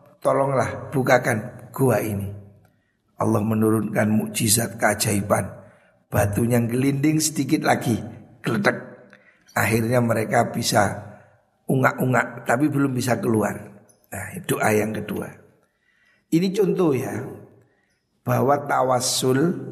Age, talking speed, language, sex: 60-79, 95 wpm, Indonesian, male